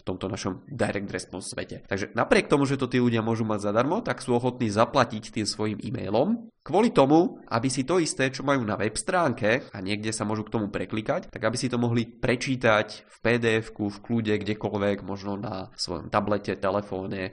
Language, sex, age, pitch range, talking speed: Czech, male, 20-39, 105-125 Hz, 195 wpm